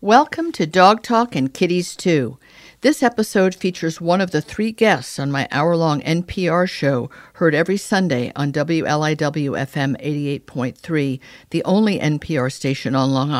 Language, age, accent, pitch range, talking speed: English, 50-69, American, 140-175 Hz, 145 wpm